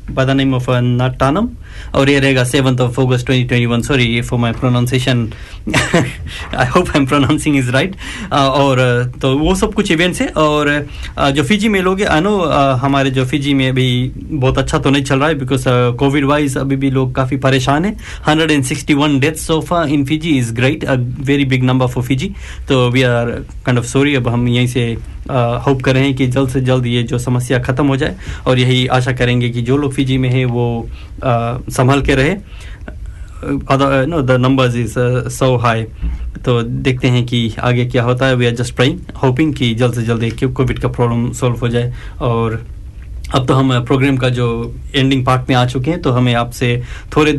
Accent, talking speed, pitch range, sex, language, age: native, 180 wpm, 120-140 Hz, male, Hindi, 20-39